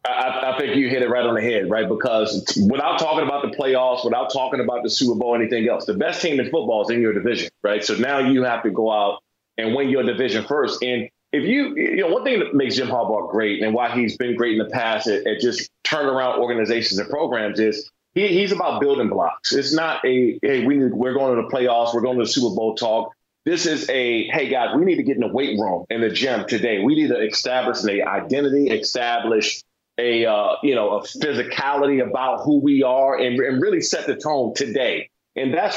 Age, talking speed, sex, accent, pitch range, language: 30-49, 235 wpm, male, American, 115-140 Hz, English